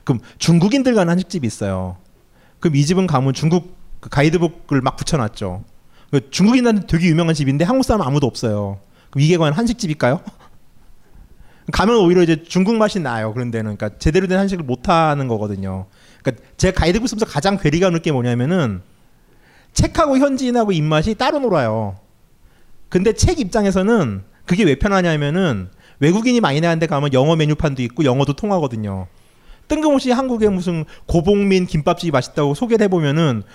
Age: 30-49